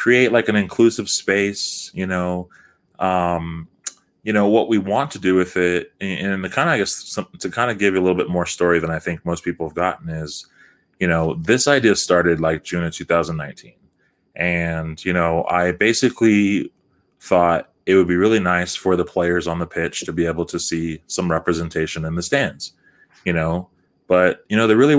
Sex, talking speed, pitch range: male, 200 wpm, 85-95 Hz